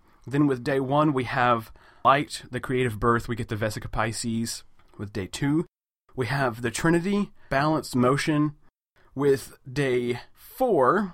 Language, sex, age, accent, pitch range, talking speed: English, male, 30-49, American, 110-135 Hz, 145 wpm